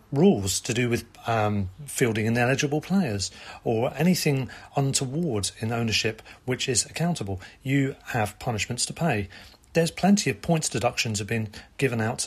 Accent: British